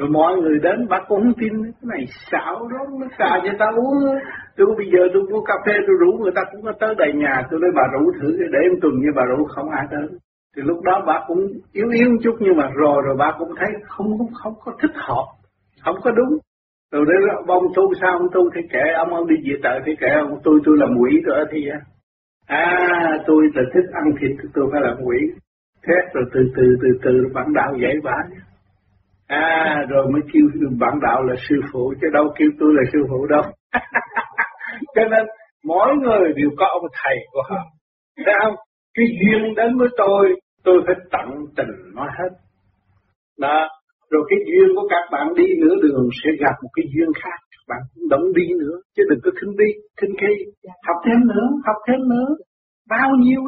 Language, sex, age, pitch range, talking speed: Vietnamese, male, 60-79, 150-250 Hz, 210 wpm